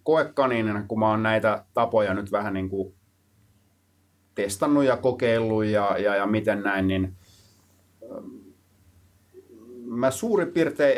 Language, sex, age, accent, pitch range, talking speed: Finnish, male, 30-49, native, 100-125 Hz, 110 wpm